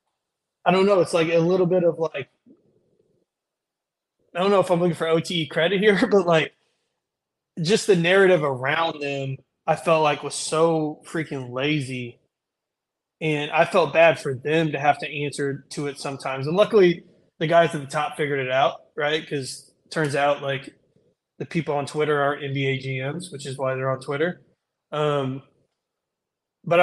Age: 20-39